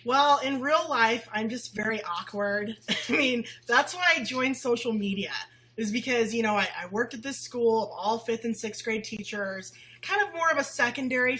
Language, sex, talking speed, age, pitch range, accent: English, female, 205 wpm, 20-39, 210-260 Hz, American